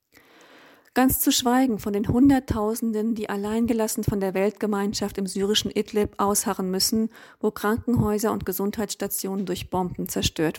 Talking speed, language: 130 wpm, German